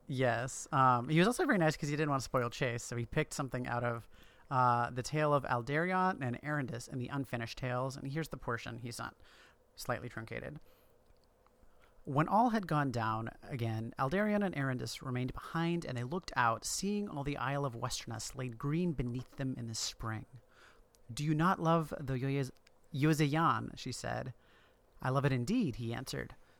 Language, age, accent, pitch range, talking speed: English, 30-49, American, 125-155 Hz, 185 wpm